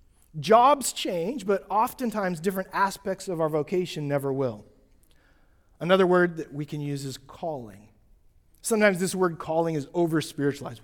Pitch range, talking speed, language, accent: 110-175 Hz, 145 wpm, English, American